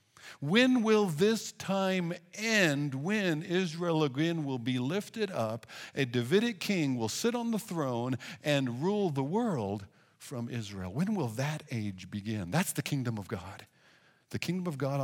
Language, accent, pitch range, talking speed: English, American, 120-175 Hz, 160 wpm